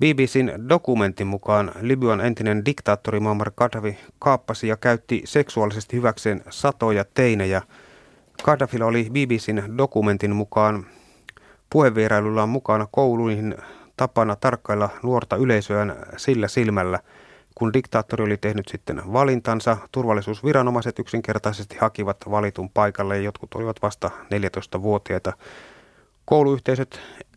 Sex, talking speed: male, 100 wpm